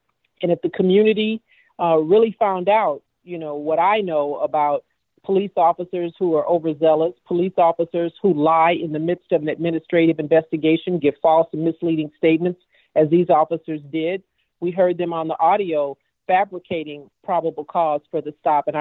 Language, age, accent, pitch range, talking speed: English, 50-69, American, 160-185 Hz, 165 wpm